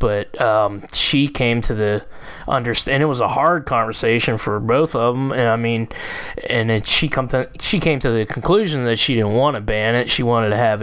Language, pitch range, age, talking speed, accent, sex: English, 120-145 Hz, 20-39, 220 wpm, American, male